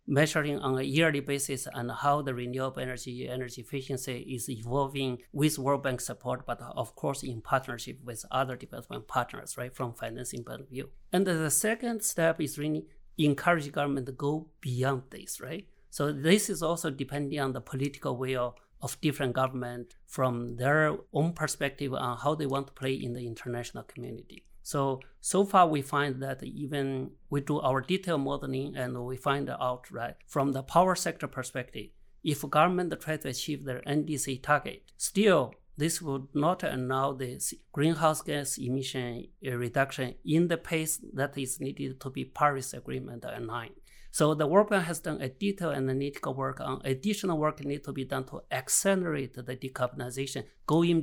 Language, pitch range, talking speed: English, 130-155 Hz, 170 wpm